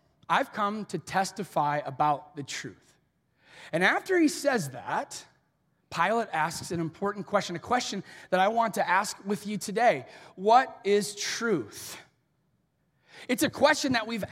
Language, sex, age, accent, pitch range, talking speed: English, male, 30-49, American, 185-255 Hz, 145 wpm